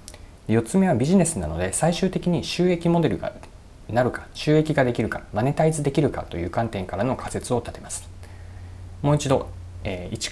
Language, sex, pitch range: Japanese, male, 90-125 Hz